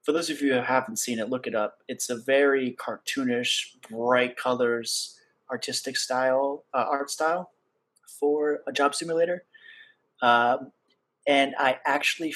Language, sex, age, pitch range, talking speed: English, male, 30-49, 120-150 Hz, 145 wpm